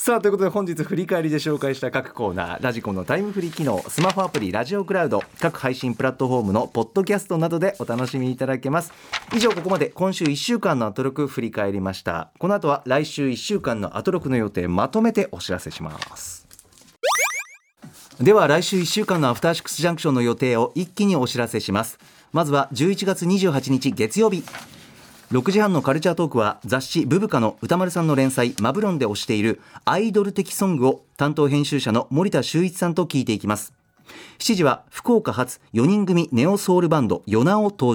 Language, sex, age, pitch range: Japanese, male, 40-59, 125-190 Hz